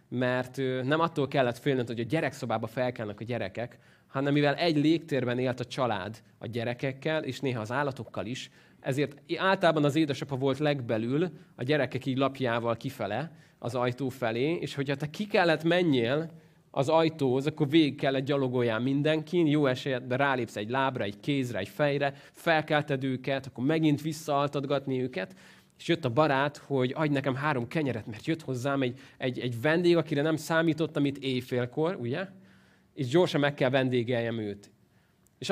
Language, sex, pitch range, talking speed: Hungarian, male, 120-150 Hz, 165 wpm